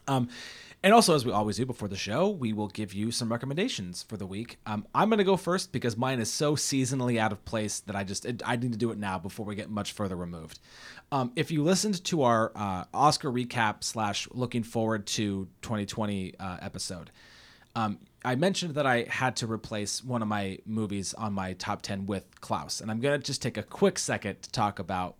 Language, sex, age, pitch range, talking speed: English, male, 30-49, 105-135 Hz, 225 wpm